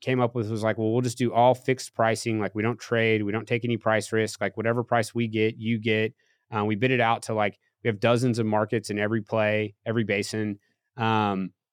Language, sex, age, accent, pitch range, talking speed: English, male, 30-49, American, 110-130 Hz, 240 wpm